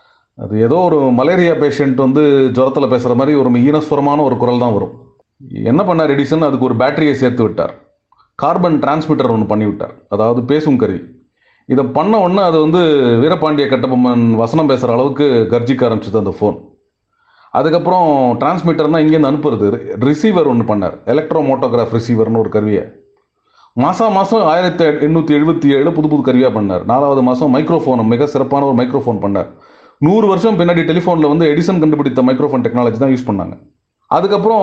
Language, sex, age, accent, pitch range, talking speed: Tamil, male, 40-59, native, 125-175 Hz, 145 wpm